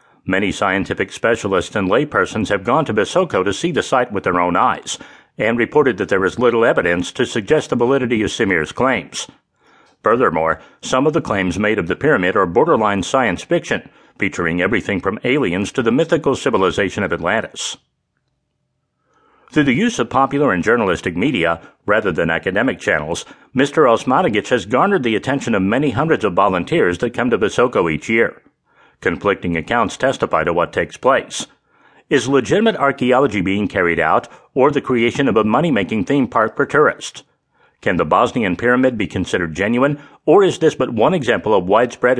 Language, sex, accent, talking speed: English, male, American, 170 wpm